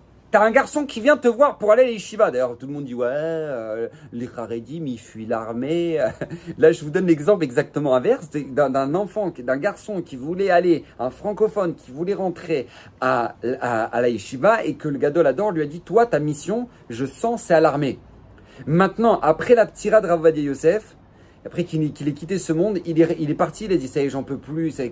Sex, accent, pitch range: male, French, 140-200 Hz